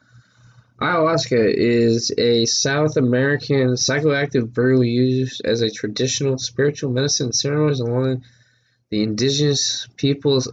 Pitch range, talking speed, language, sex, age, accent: 120-140 Hz, 105 wpm, English, male, 20-39, American